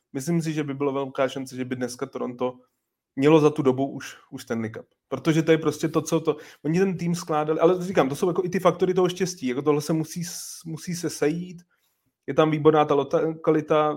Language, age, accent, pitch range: Czech, 30-49, native, 135-160 Hz